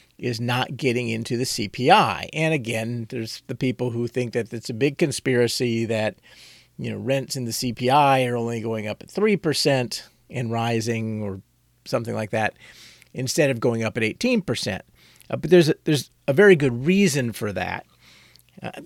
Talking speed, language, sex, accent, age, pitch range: 170 wpm, English, male, American, 40-59, 115-145 Hz